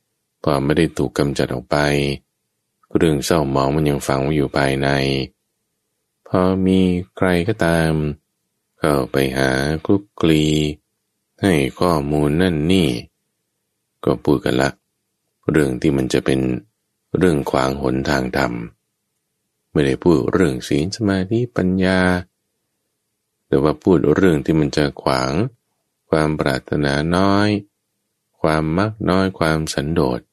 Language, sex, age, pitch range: English, male, 20-39, 70-95 Hz